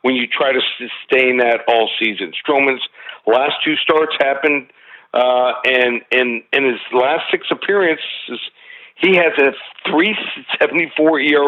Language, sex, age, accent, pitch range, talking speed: English, male, 60-79, American, 125-150 Hz, 130 wpm